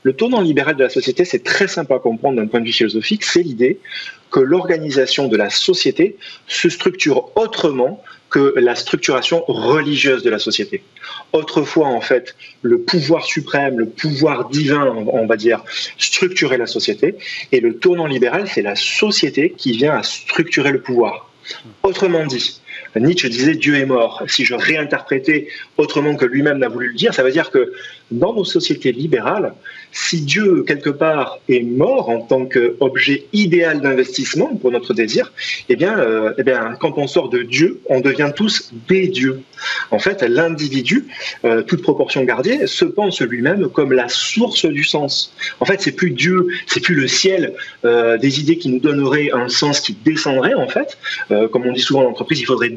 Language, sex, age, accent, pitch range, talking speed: French, male, 30-49, French, 130-205 Hz, 185 wpm